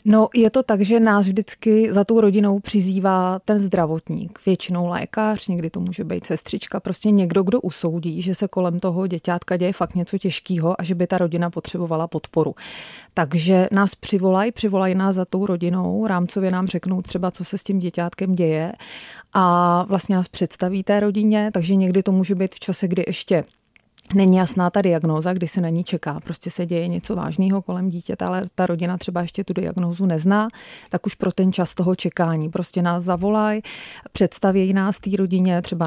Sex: female